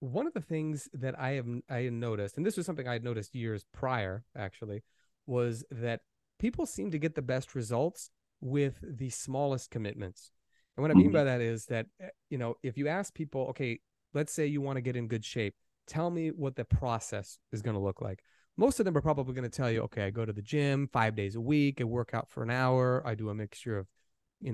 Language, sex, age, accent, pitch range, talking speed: English, male, 30-49, American, 110-140 Hz, 235 wpm